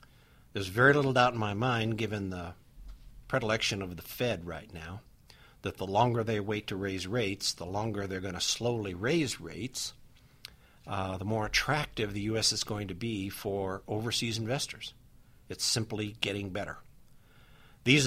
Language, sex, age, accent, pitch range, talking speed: English, male, 60-79, American, 95-120 Hz, 165 wpm